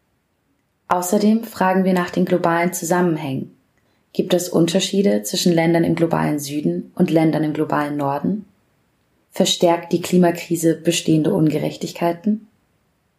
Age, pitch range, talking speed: 20-39, 160-190 Hz, 115 wpm